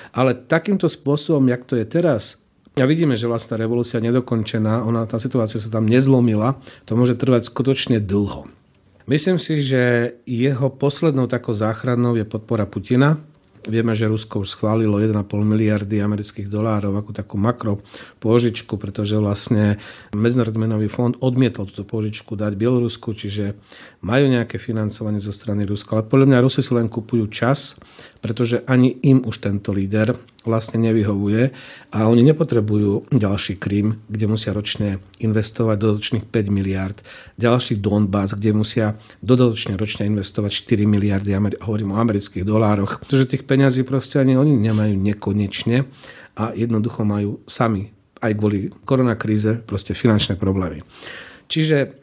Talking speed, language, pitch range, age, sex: 140 wpm, Slovak, 105-125 Hz, 40-59, male